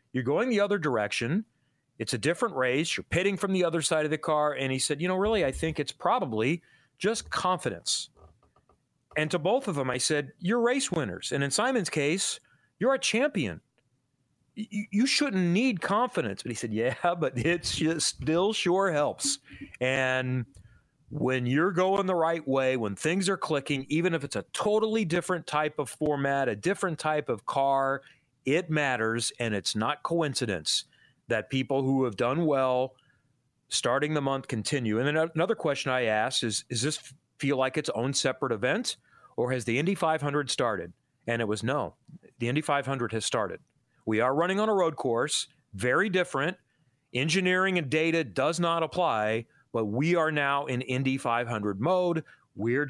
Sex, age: male, 40-59